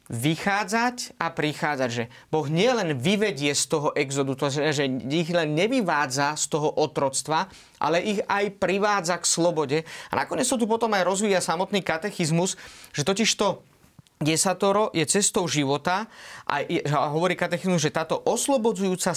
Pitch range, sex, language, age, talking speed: 150-190 Hz, male, Slovak, 30-49, 150 wpm